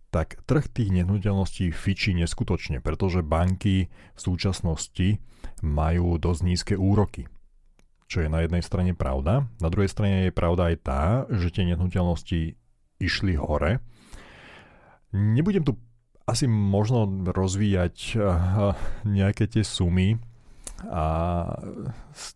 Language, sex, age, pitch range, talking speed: Slovak, male, 40-59, 85-100 Hz, 115 wpm